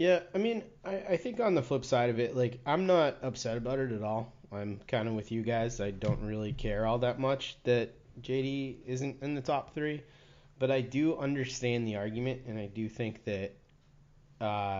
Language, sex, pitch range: English, male, 105-135 Hz